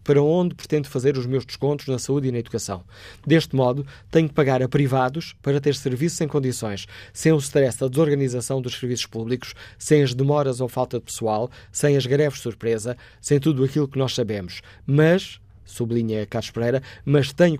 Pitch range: 115-145 Hz